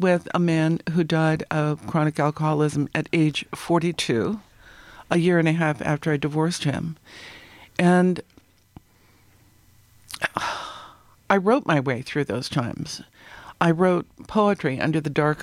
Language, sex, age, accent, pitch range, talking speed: English, female, 60-79, American, 150-175 Hz, 130 wpm